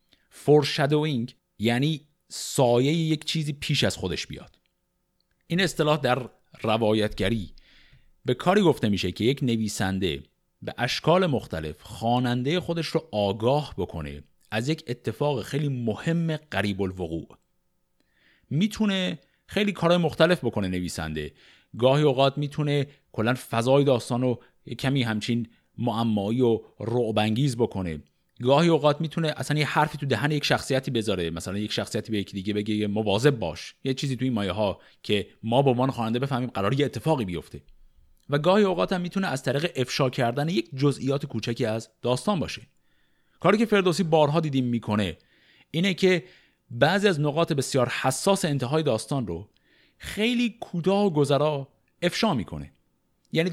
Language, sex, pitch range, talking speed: Persian, male, 110-155 Hz, 140 wpm